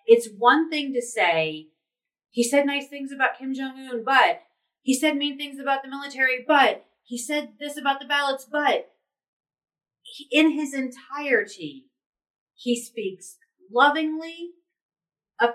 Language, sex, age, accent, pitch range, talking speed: English, female, 30-49, American, 185-295 Hz, 140 wpm